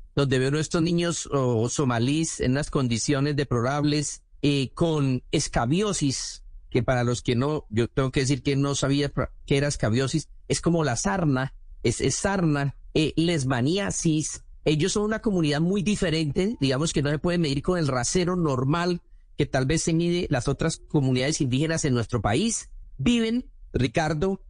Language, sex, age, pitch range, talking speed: Spanish, male, 40-59, 140-190 Hz, 165 wpm